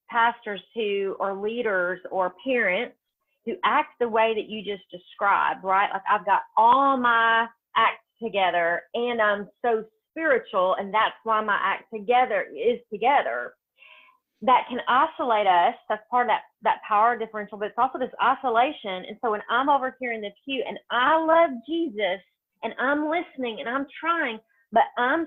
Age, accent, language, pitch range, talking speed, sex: 30-49, American, English, 210-270 Hz, 170 wpm, female